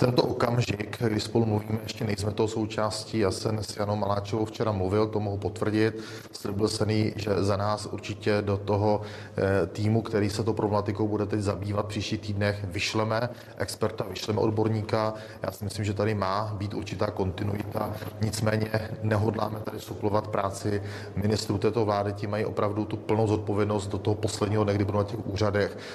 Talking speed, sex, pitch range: 160 wpm, male, 105-110 Hz